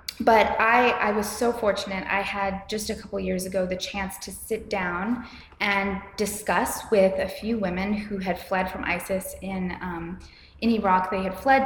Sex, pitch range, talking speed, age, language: female, 180-205 Hz, 185 wpm, 20-39, English